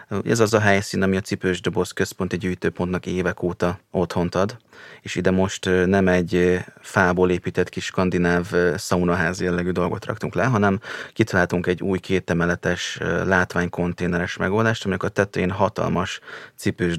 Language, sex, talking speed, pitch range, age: Hungarian, male, 145 wpm, 90-100 Hz, 30-49